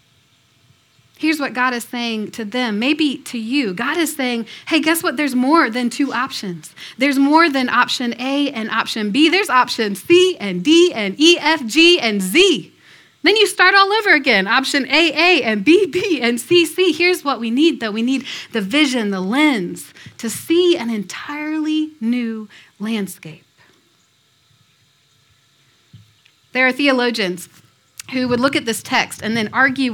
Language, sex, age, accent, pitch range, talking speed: English, female, 30-49, American, 215-300 Hz, 170 wpm